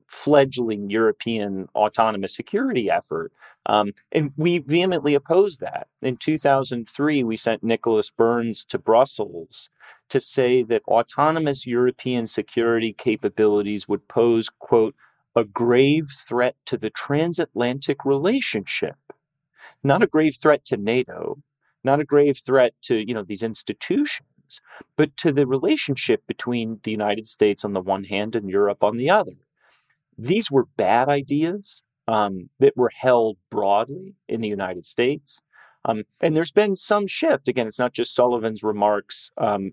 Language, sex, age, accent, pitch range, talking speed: English, male, 30-49, American, 110-155 Hz, 140 wpm